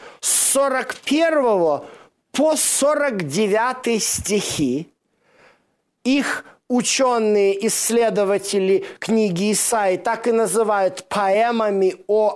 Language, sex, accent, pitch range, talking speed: Russian, male, native, 210-265 Hz, 70 wpm